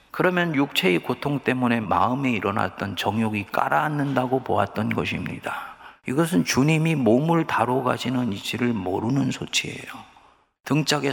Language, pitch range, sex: Korean, 100-135 Hz, male